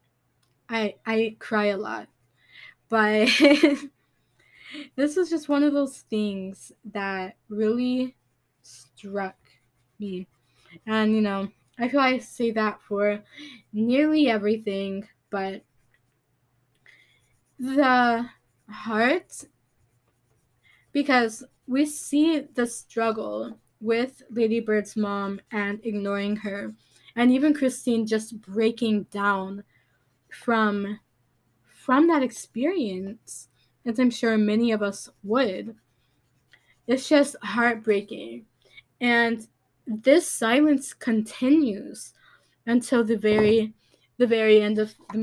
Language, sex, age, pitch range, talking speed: English, female, 10-29, 195-240 Hz, 100 wpm